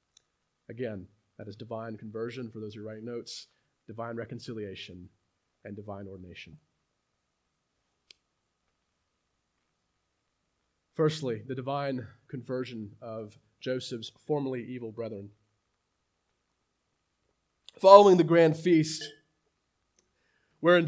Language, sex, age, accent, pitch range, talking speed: English, male, 30-49, American, 115-170 Hz, 85 wpm